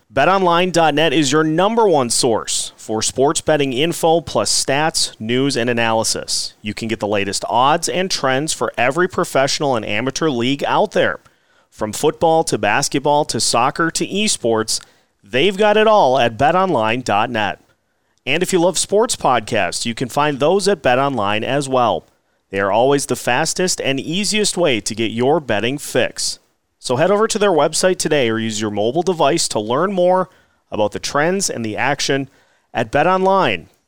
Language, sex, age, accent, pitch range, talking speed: English, male, 40-59, American, 110-165 Hz, 170 wpm